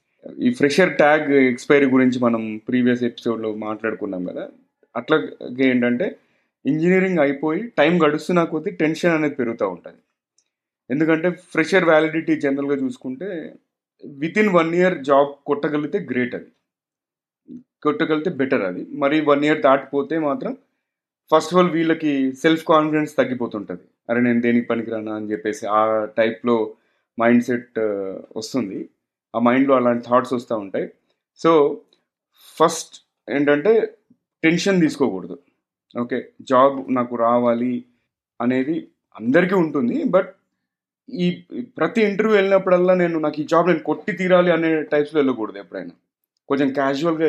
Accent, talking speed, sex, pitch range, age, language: native, 120 wpm, male, 125-170 Hz, 30-49, Telugu